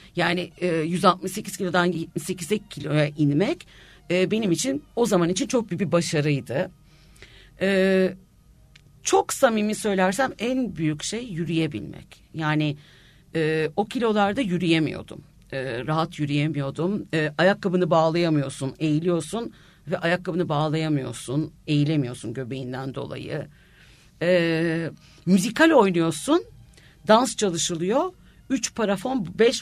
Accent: native